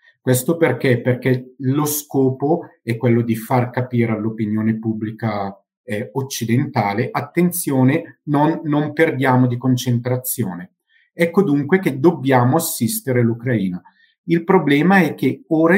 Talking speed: 120 wpm